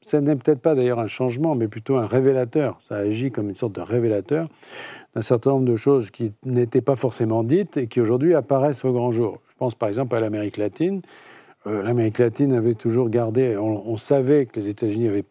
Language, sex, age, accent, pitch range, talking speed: French, male, 50-69, French, 105-135 Hz, 215 wpm